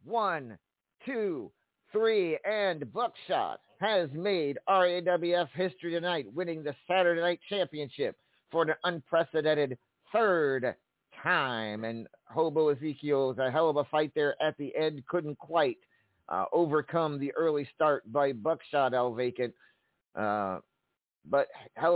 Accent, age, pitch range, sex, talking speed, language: American, 50-69, 130-165 Hz, male, 125 wpm, English